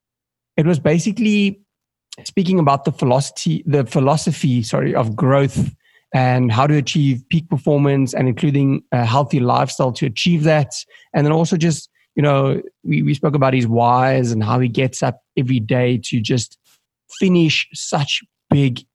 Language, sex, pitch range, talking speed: English, male, 130-160 Hz, 160 wpm